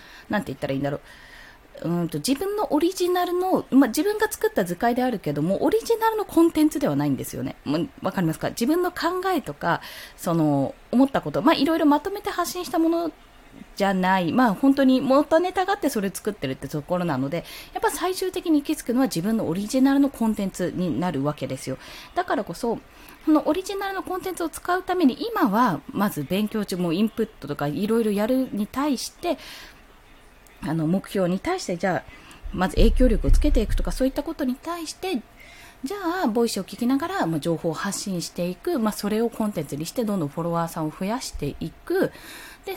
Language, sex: Japanese, female